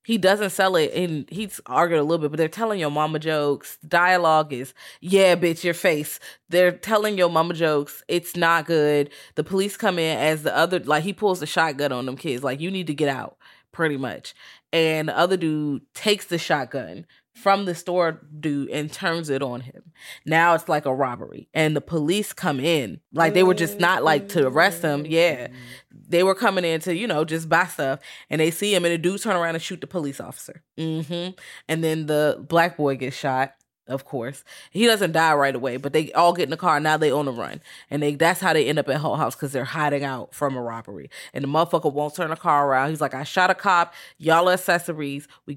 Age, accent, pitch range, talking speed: 20-39, American, 145-175 Hz, 230 wpm